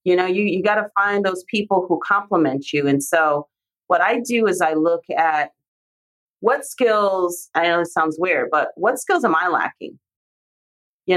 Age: 40-59